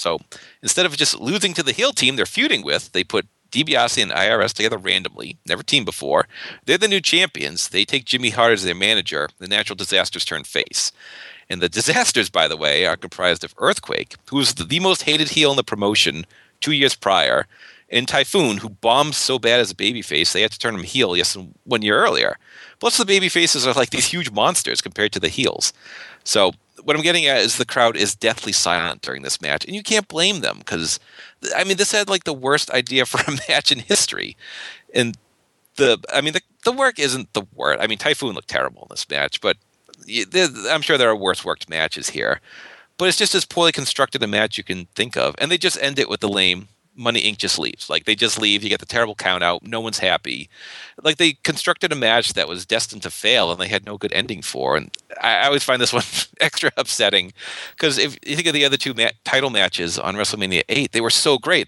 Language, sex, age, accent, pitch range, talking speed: English, male, 40-59, American, 105-150 Hz, 225 wpm